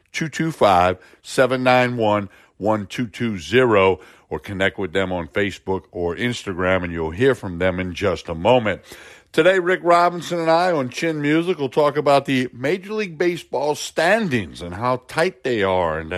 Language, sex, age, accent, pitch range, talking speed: English, male, 60-79, American, 100-140 Hz, 155 wpm